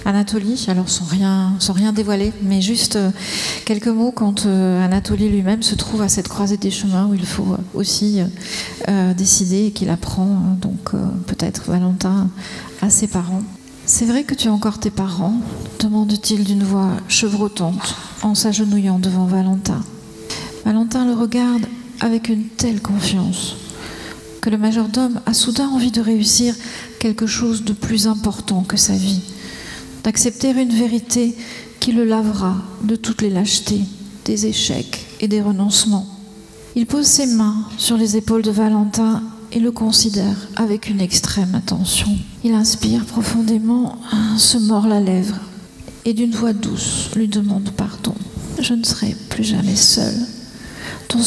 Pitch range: 195-225 Hz